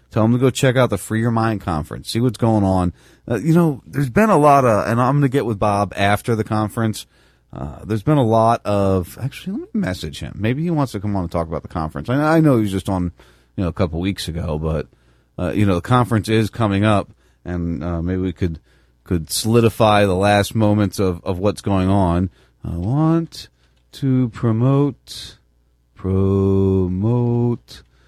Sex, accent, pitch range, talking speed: male, American, 85-115 Hz, 205 wpm